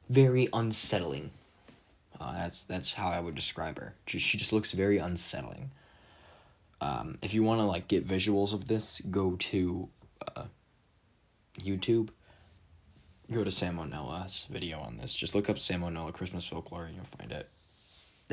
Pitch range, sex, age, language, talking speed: 85-100 Hz, male, 20-39, English, 155 wpm